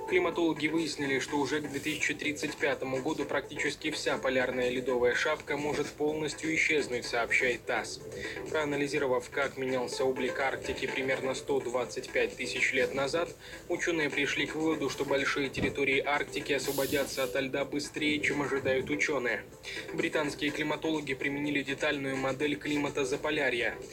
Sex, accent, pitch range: male, native, 140-160 Hz